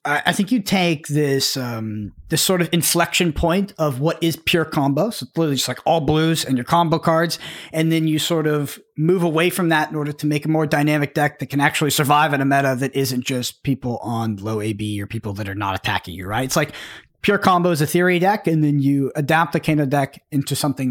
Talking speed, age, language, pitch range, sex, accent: 230 wpm, 30-49, English, 130-165 Hz, male, American